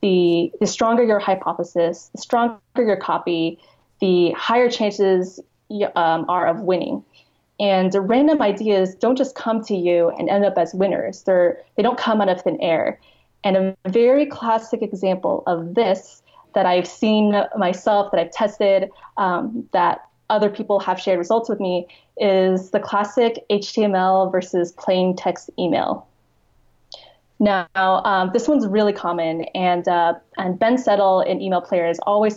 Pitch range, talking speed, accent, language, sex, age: 180-215 Hz, 155 wpm, American, English, female, 20-39